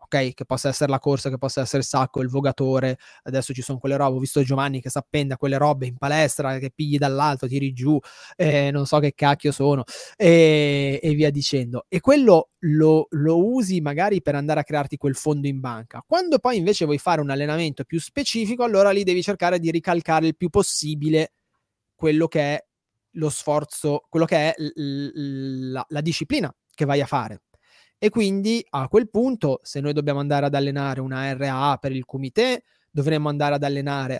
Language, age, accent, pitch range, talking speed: Italian, 20-39, native, 140-190 Hz, 195 wpm